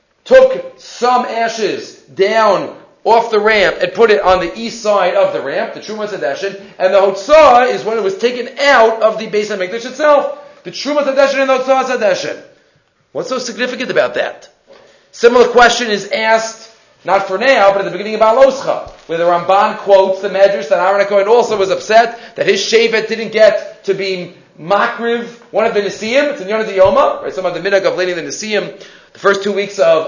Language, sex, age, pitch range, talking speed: English, male, 40-59, 195-270 Hz, 200 wpm